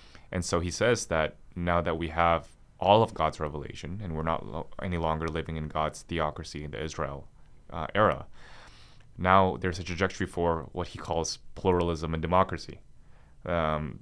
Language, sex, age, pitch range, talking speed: English, male, 30-49, 80-95 Hz, 165 wpm